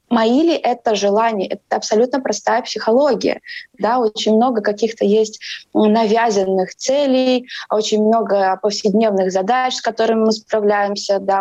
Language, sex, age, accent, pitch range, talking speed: Russian, female, 20-39, native, 200-245 Hz, 115 wpm